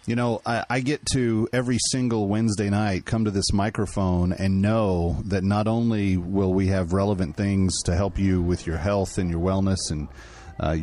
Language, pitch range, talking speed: English, 90-115 Hz, 195 wpm